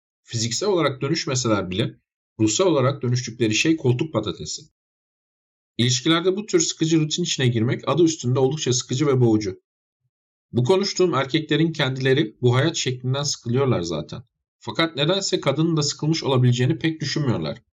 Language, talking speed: Turkish, 135 wpm